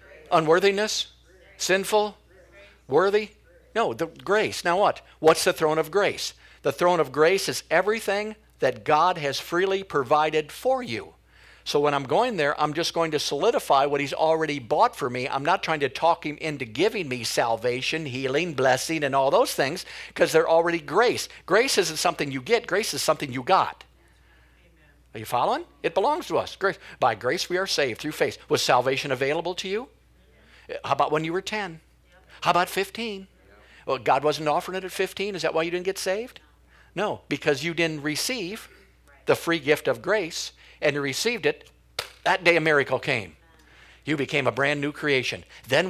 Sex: male